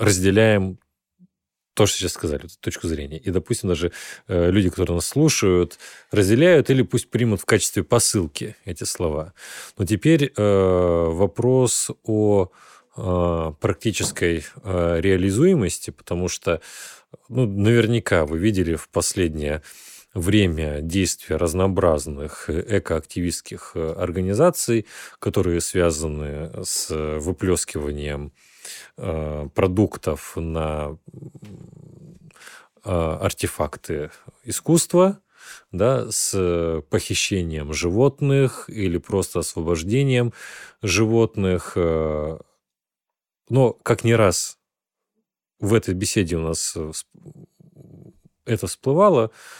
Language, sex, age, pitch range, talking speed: Russian, male, 30-49, 85-110 Hz, 80 wpm